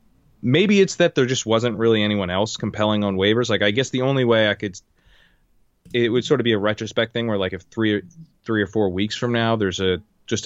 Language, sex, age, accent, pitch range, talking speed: English, male, 20-39, American, 90-110 Hz, 235 wpm